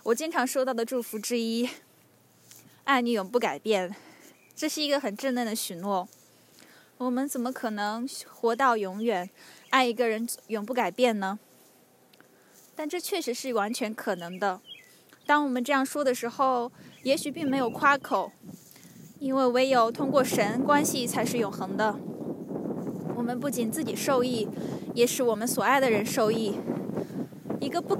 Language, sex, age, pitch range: English, female, 10-29, 225-275 Hz